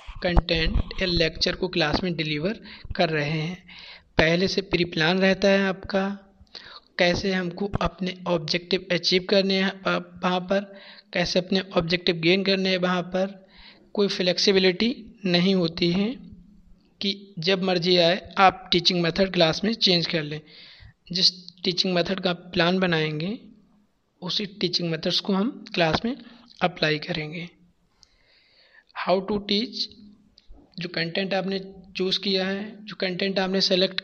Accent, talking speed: native, 140 wpm